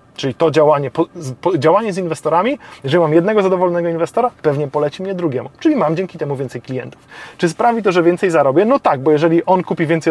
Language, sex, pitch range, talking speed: Polish, male, 125-160 Hz, 200 wpm